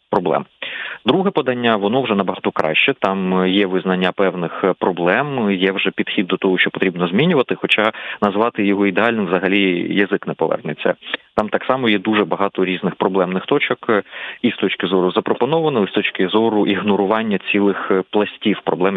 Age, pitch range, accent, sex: 30-49, 95-110 Hz, native, male